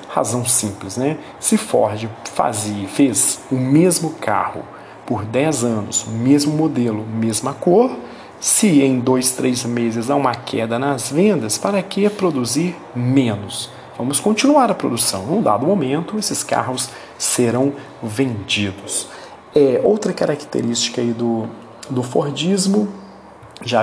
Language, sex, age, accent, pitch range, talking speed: Romanian, male, 40-59, Brazilian, 120-165 Hz, 130 wpm